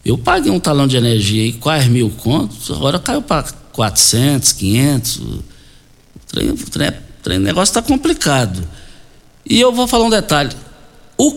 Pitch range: 120-180 Hz